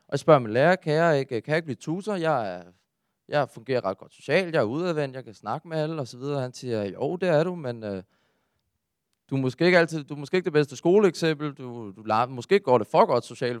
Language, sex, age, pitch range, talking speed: Danish, male, 20-39, 110-150 Hz, 265 wpm